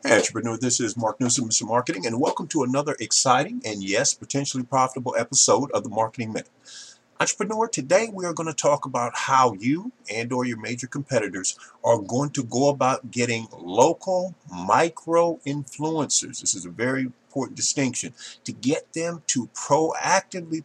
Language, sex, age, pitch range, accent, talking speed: English, male, 50-69, 115-155 Hz, American, 160 wpm